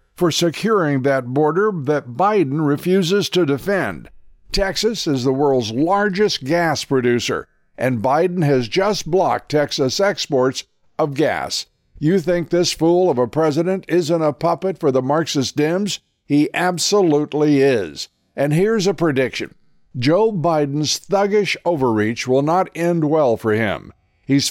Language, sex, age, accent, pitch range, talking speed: English, male, 60-79, American, 140-180 Hz, 140 wpm